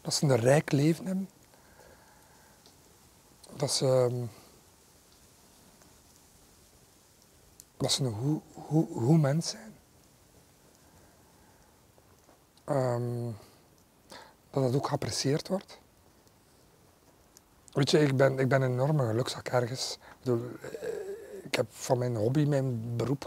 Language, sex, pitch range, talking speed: Dutch, male, 120-150 Hz, 105 wpm